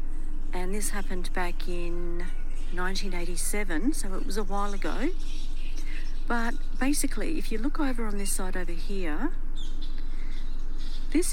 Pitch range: 180-280 Hz